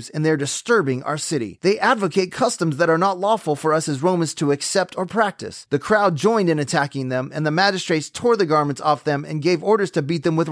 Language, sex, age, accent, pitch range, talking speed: English, male, 30-49, American, 145-195 Hz, 240 wpm